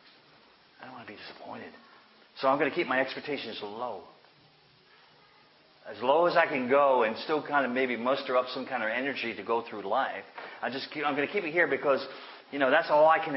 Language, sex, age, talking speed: English, male, 50-69, 230 wpm